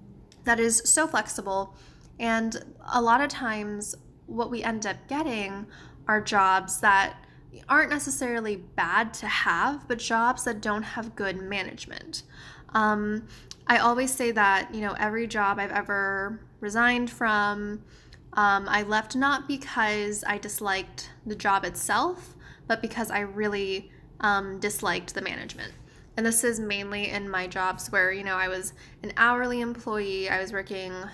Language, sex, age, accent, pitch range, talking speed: English, female, 10-29, American, 195-230 Hz, 150 wpm